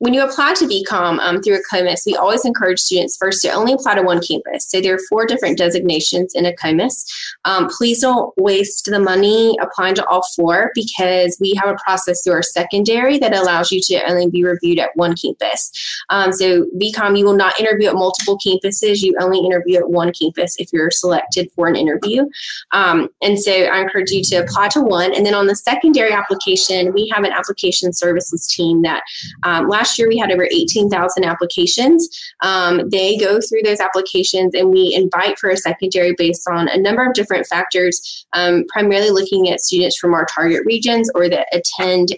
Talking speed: 200 wpm